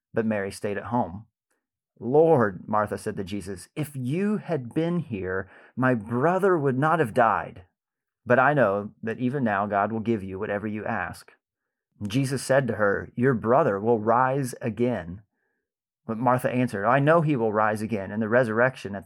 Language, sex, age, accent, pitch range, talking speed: English, male, 30-49, American, 105-135 Hz, 175 wpm